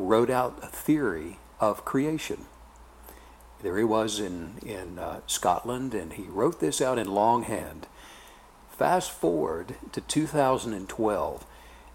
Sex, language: male, English